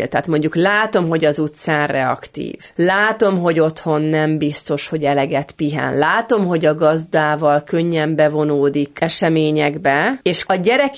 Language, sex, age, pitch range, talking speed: Hungarian, female, 30-49, 150-205 Hz, 135 wpm